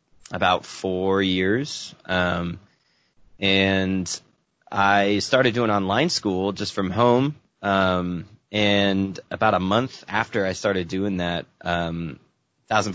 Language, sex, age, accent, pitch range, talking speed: English, male, 20-39, American, 90-105 Hz, 115 wpm